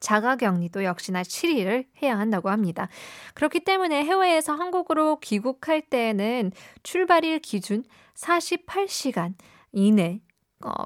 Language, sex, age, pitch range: Korean, female, 20-39, 190-260 Hz